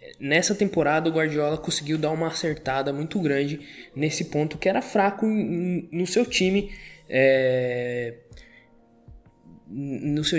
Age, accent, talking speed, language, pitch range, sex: 20-39, Brazilian, 105 wpm, Portuguese, 140-190 Hz, male